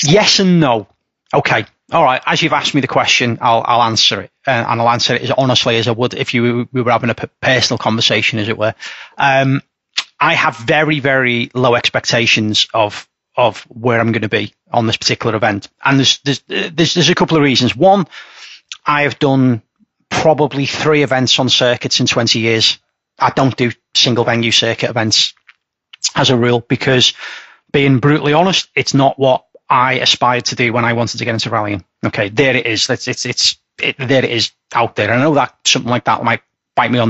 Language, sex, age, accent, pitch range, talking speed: English, male, 30-49, British, 115-135 Hz, 205 wpm